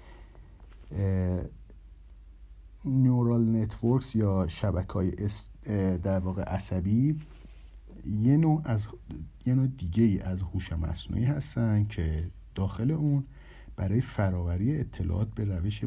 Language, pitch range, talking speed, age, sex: Persian, 90-115 Hz, 105 wpm, 50-69, male